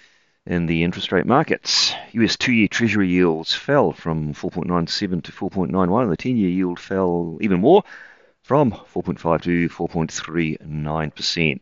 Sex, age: male, 40-59